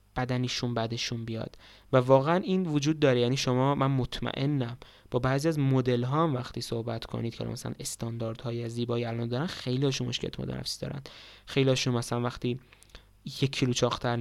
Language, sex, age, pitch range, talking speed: Persian, male, 20-39, 115-135 Hz, 155 wpm